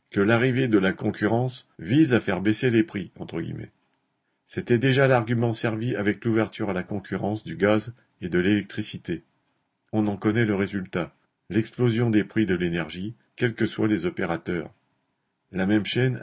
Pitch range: 105-120 Hz